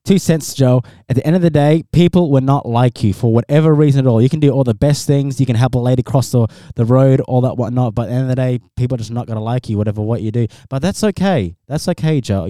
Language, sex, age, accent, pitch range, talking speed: English, male, 20-39, Australian, 115-140 Hz, 305 wpm